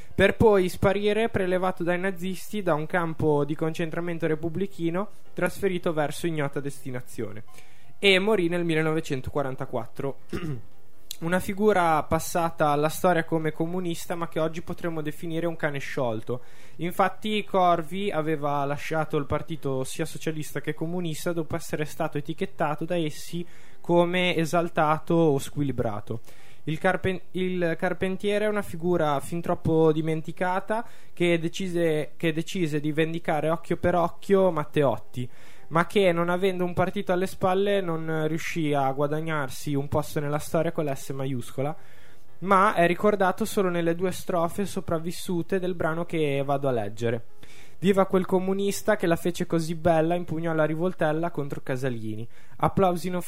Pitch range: 150-180 Hz